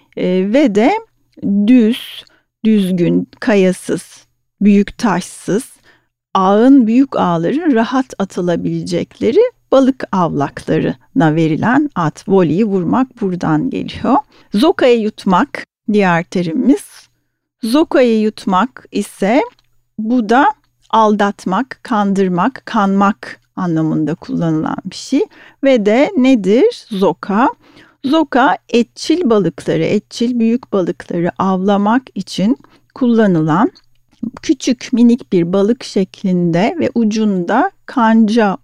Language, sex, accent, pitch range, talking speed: Turkish, female, native, 185-250 Hz, 90 wpm